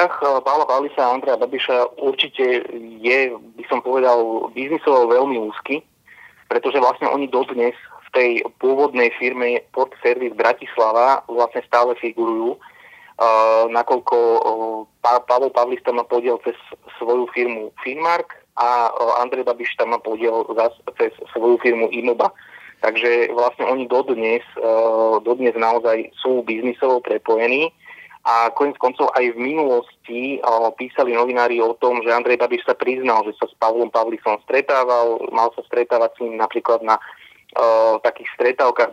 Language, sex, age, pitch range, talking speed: Slovak, male, 30-49, 115-170 Hz, 135 wpm